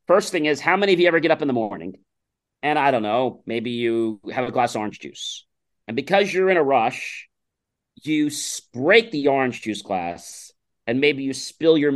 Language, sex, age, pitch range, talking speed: English, male, 40-59, 115-150 Hz, 210 wpm